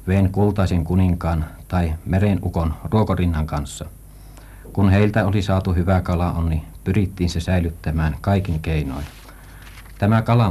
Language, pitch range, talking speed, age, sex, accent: Finnish, 80-95 Hz, 120 wpm, 60-79, male, native